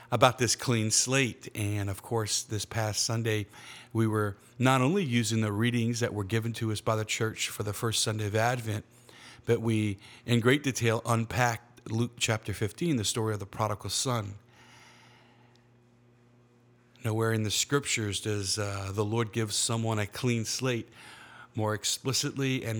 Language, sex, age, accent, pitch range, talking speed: English, male, 50-69, American, 105-120 Hz, 165 wpm